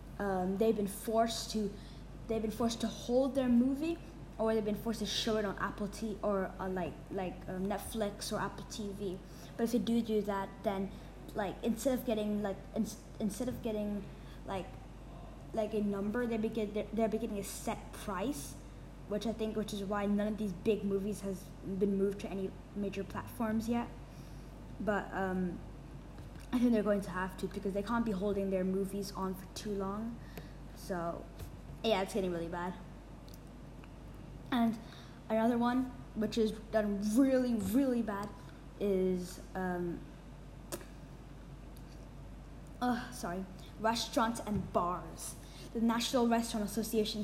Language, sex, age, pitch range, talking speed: English, female, 20-39, 195-225 Hz, 160 wpm